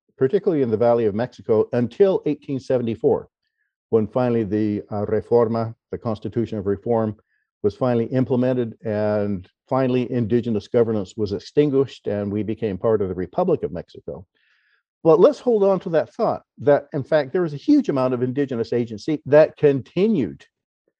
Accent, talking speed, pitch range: American, 155 wpm, 110-145 Hz